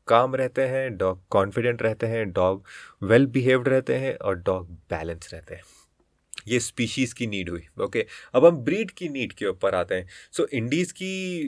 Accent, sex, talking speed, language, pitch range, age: native, male, 195 wpm, Hindi, 120-155 Hz, 30-49